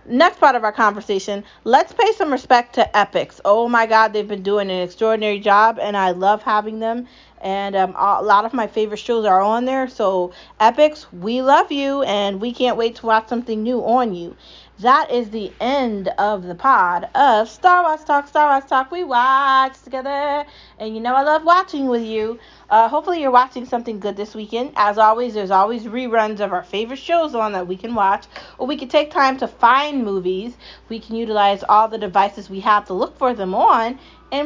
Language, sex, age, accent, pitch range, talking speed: English, female, 30-49, American, 210-270 Hz, 205 wpm